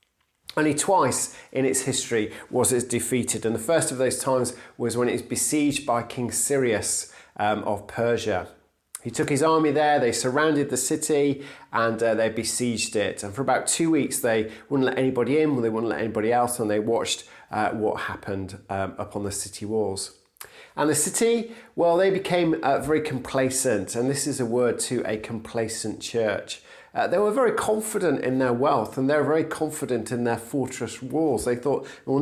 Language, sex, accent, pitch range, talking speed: English, male, British, 115-145 Hz, 190 wpm